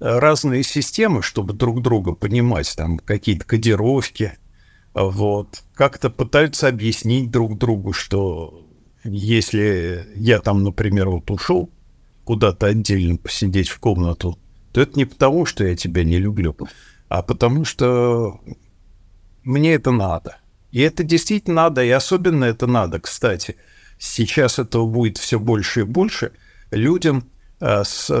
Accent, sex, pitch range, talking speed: native, male, 95-130 Hz, 130 wpm